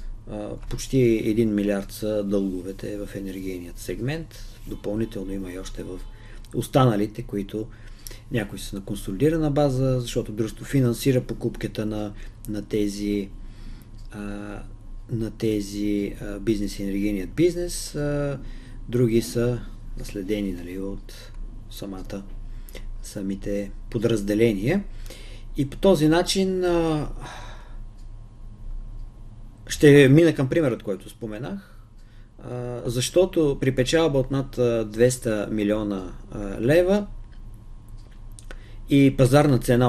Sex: male